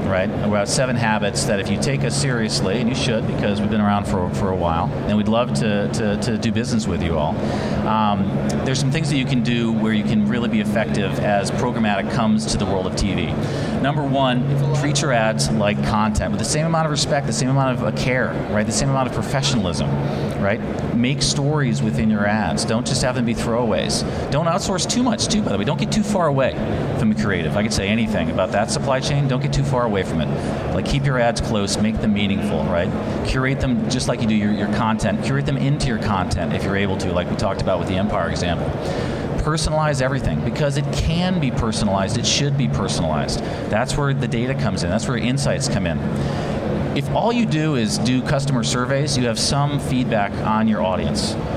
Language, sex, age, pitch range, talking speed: English, male, 40-59, 95-135 Hz, 225 wpm